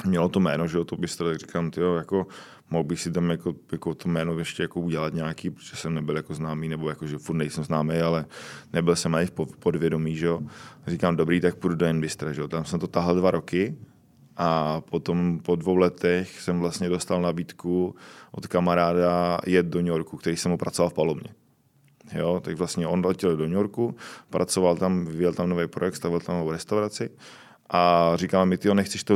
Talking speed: 205 wpm